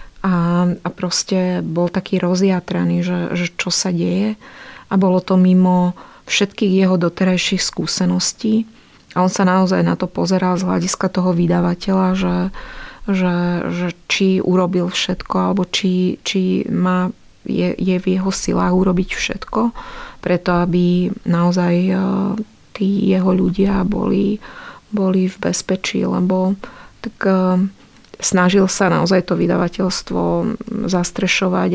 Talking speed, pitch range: 125 wpm, 180-195 Hz